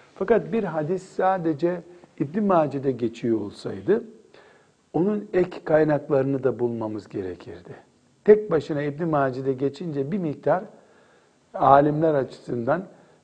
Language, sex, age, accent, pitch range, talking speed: Turkish, male, 60-79, native, 135-175 Hz, 105 wpm